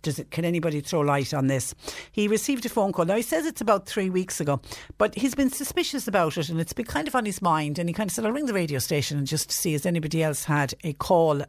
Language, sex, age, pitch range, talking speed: English, female, 60-79, 145-210 Hz, 285 wpm